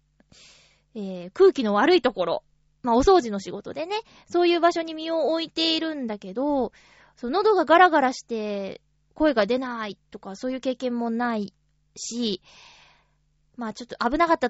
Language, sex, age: Japanese, female, 20-39